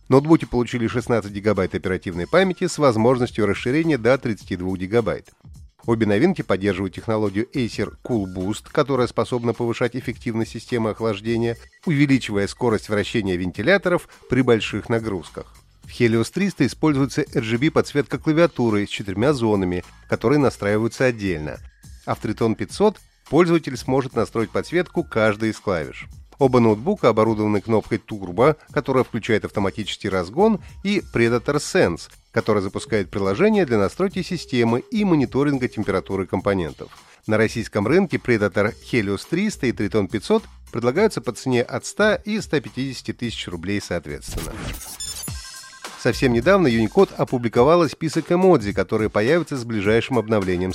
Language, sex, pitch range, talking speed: Russian, male, 105-145 Hz, 125 wpm